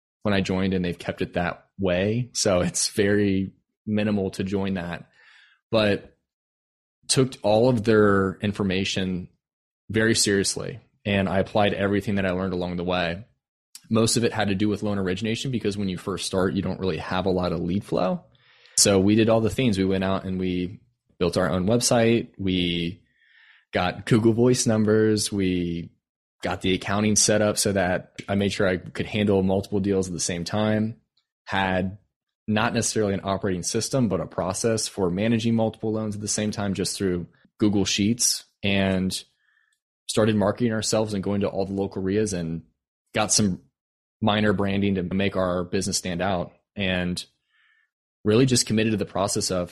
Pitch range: 95-110 Hz